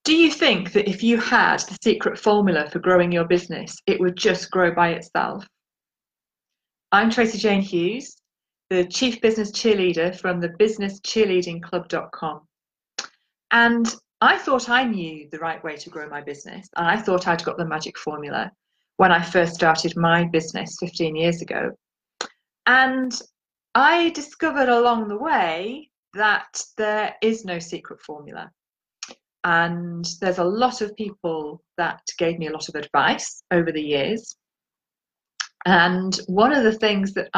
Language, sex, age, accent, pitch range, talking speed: English, female, 30-49, British, 170-220 Hz, 150 wpm